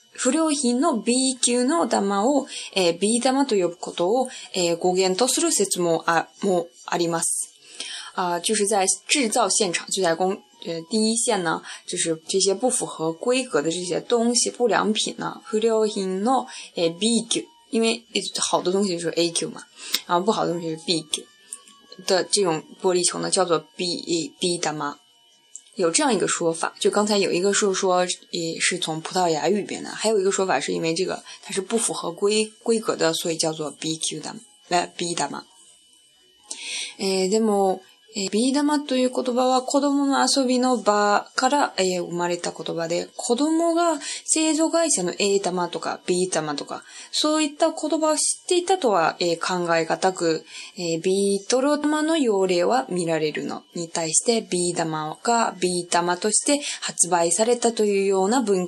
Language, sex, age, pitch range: Chinese, female, 20-39, 175-245 Hz